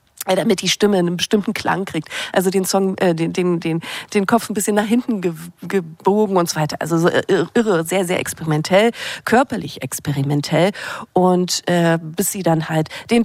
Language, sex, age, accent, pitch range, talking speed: German, female, 40-59, German, 165-220 Hz, 175 wpm